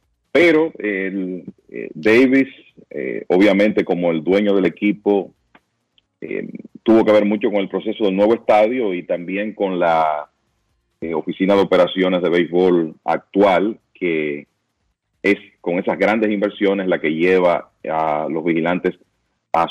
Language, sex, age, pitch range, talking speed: Spanish, male, 40-59, 90-105 Hz, 140 wpm